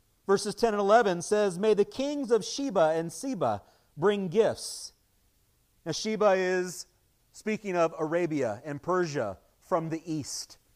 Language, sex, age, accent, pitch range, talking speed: English, male, 40-59, American, 135-185 Hz, 140 wpm